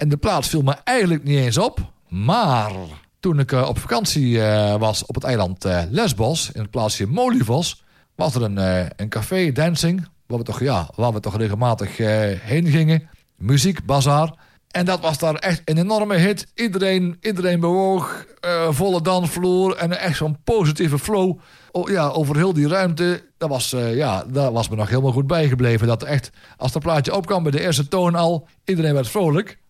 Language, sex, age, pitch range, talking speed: Dutch, male, 50-69, 115-170 Hz, 180 wpm